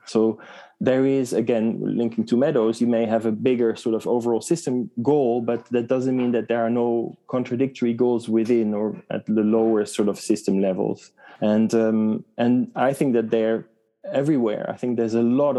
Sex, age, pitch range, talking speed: male, 20-39, 110-120 Hz, 190 wpm